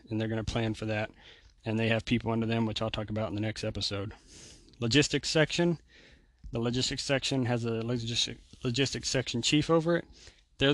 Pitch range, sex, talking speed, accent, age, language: 110-130 Hz, male, 195 wpm, American, 30-49, English